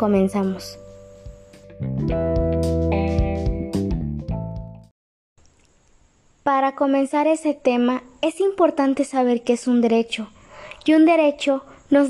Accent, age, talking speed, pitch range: Mexican, 20-39, 80 wpm, 225-285 Hz